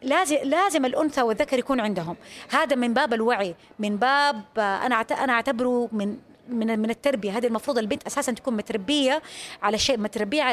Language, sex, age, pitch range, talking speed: Arabic, female, 20-39, 225-290 Hz, 150 wpm